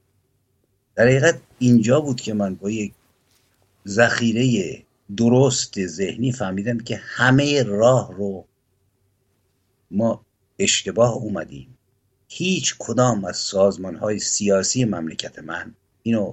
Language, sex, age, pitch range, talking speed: English, male, 60-79, 95-120 Hz, 95 wpm